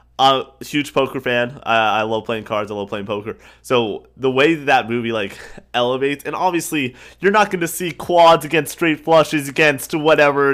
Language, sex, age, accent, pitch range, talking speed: English, male, 20-39, American, 115-155 Hz, 195 wpm